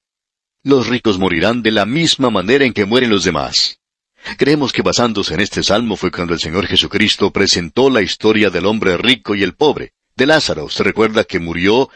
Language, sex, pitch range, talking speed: Spanish, male, 100-140 Hz, 190 wpm